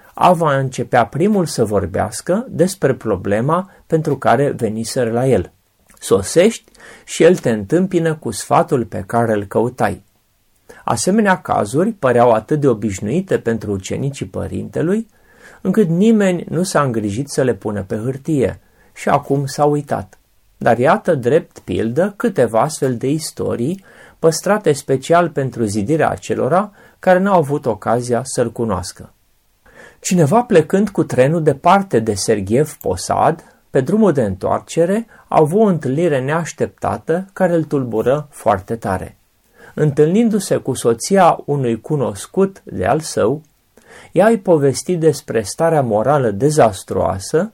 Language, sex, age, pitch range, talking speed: Romanian, male, 30-49, 115-175 Hz, 130 wpm